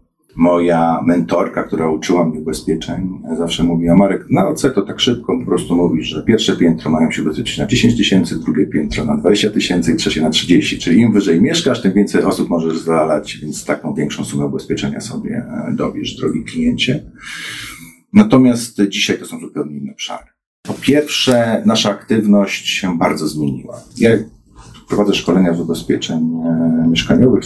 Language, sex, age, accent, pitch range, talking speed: Polish, male, 40-59, native, 80-100 Hz, 160 wpm